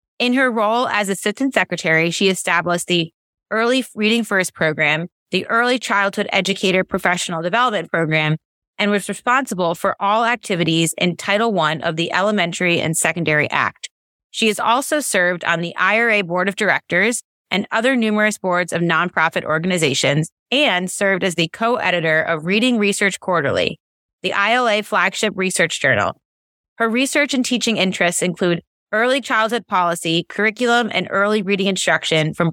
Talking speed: 150 wpm